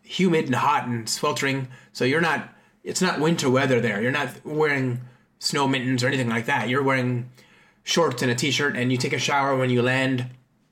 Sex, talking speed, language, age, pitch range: male, 200 wpm, English, 30-49, 120-150 Hz